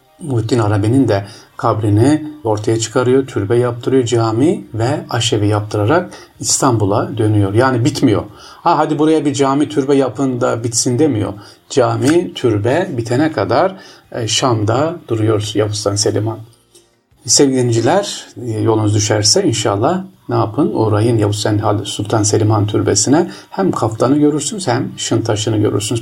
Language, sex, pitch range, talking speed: Turkish, male, 110-140 Hz, 125 wpm